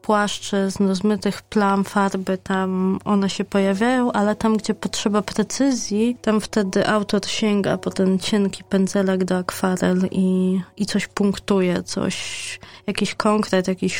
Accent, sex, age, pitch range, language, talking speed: native, female, 20-39, 190-210 Hz, Polish, 135 wpm